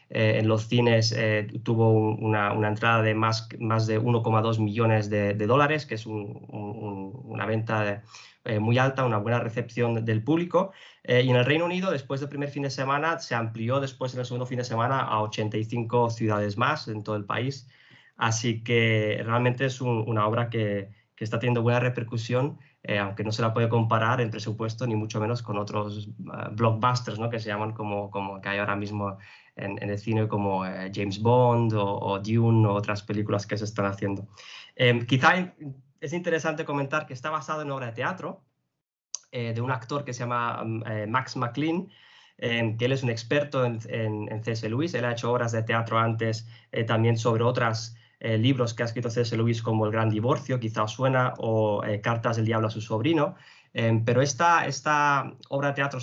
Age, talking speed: 20-39, 205 wpm